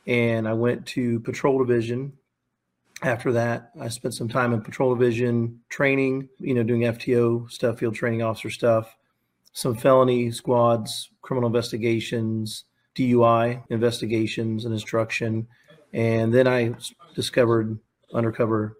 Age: 40-59